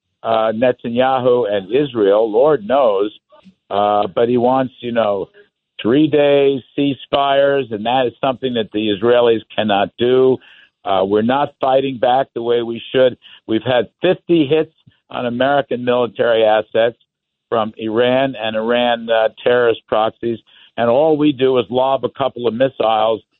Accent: American